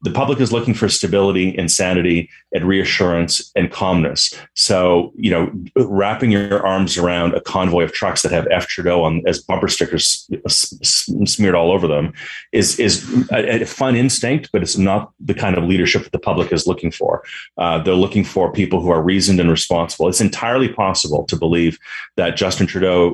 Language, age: English, 30-49